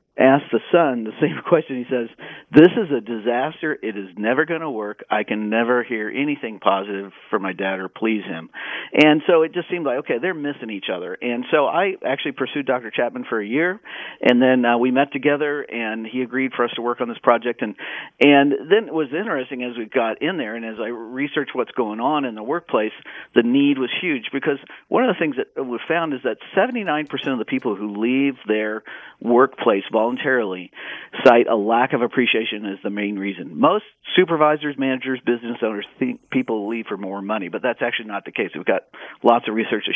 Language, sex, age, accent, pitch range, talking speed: English, male, 50-69, American, 110-145 Hz, 215 wpm